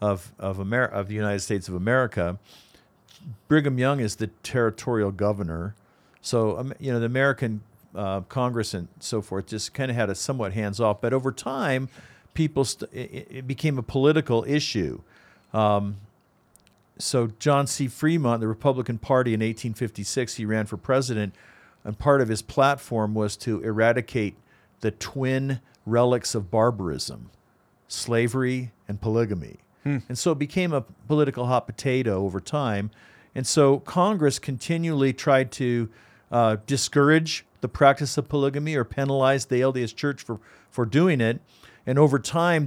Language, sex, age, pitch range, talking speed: English, male, 50-69, 105-135 Hz, 150 wpm